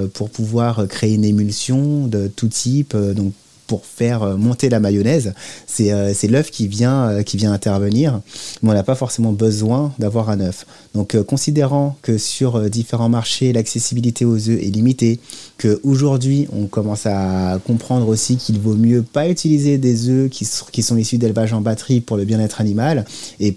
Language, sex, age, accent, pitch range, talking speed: French, male, 30-49, French, 105-125 Hz, 185 wpm